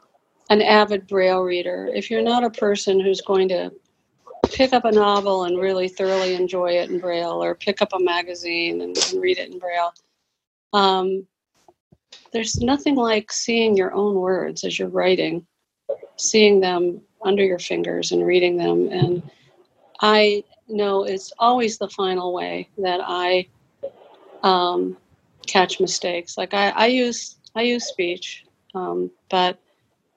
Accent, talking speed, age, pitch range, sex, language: American, 150 wpm, 50-69, 175-205 Hz, female, English